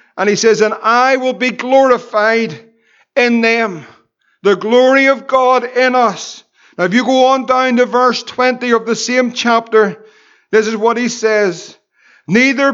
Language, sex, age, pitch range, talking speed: English, male, 50-69, 220-255 Hz, 165 wpm